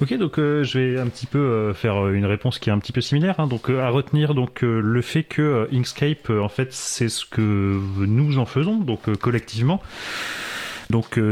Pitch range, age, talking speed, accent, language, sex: 105-135 Hz, 30-49, 230 wpm, French, French, male